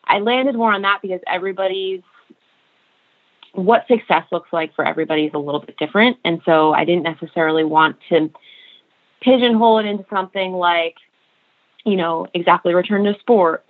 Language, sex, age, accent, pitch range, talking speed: English, female, 20-39, American, 160-190 Hz, 160 wpm